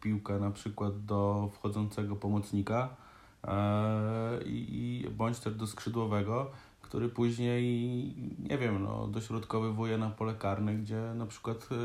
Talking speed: 125 wpm